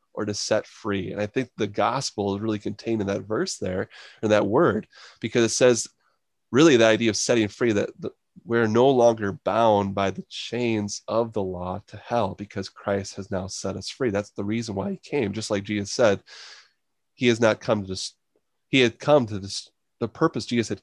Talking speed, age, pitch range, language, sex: 205 wpm, 20-39, 100-115 Hz, English, male